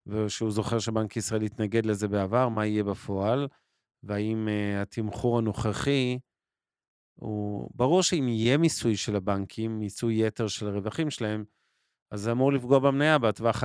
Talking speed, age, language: 140 wpm, 40-59, Hebrew